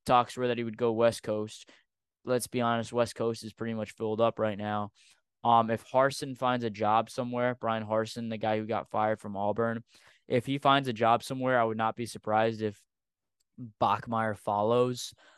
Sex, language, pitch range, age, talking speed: male, English, 110-125 Hz, 10-29, 195 wpm